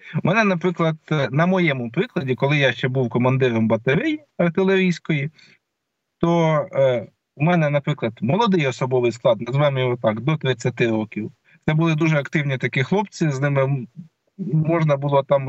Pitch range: 125-165 Hz